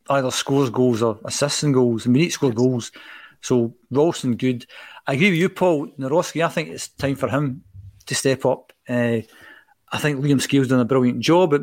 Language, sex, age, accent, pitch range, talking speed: English, male, 50-69, British, 120-140 Hz, 210 wpm